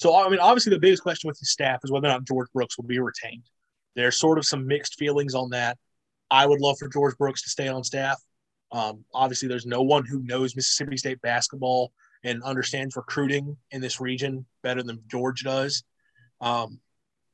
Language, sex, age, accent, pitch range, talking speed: English, male, 30-49, American, 125-140 Hz, 200 wpm